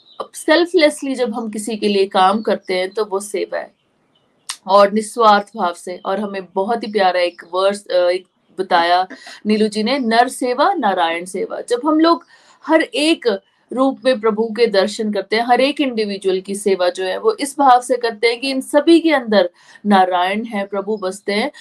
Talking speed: 190 wpm